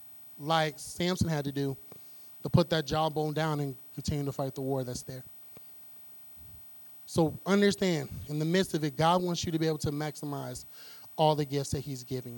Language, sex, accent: English, male, American